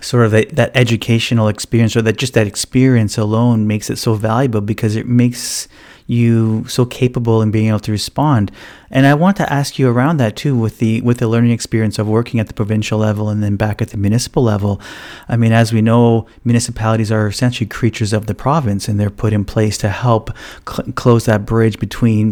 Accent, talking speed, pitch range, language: American, 205 wpm, 110-125 Hz, English